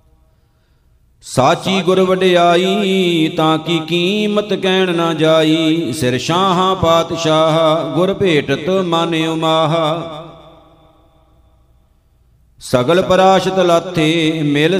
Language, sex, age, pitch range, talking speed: Punjabi, male, 50-69, 160-180 Hz, 70 wpm